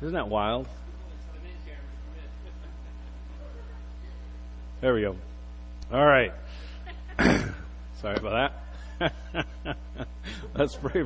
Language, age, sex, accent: English, 40-59, male, American